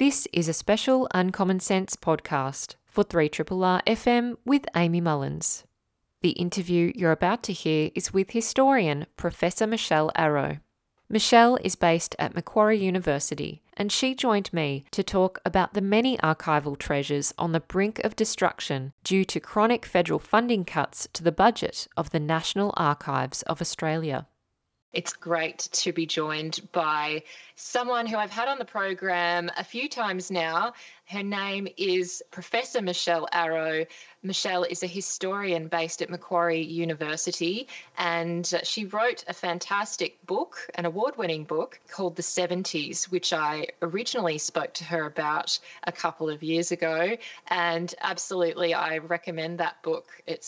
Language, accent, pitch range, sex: English, Australian, 165-200 Hz, female